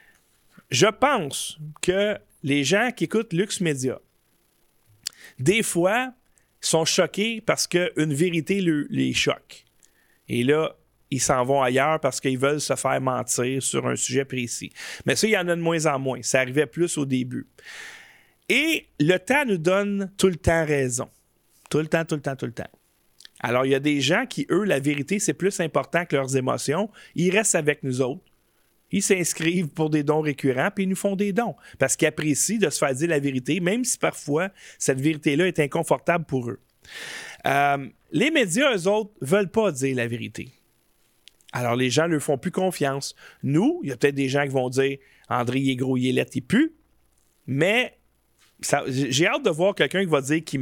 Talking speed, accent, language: 195 wpm, Canadian, French